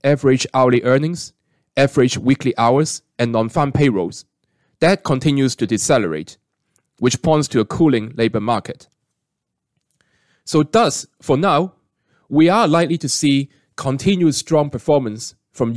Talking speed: 125 wpm